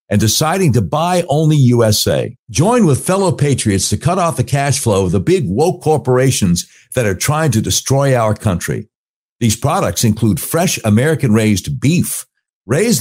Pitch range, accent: 110-160 Hz, American